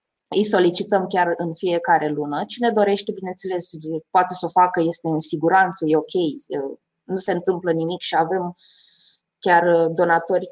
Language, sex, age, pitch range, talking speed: English, female, 20-39, 165-210 Hz, 150 wpm